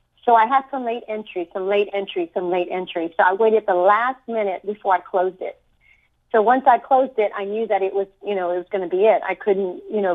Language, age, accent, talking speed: English, 50-69, American, 260 wpm